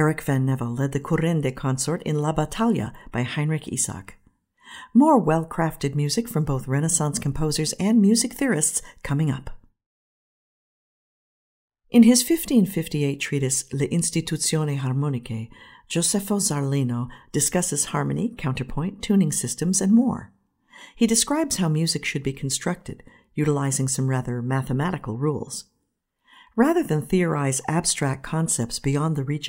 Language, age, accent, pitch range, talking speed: English, 50-69, American, 130-180 Hz, 125 wpm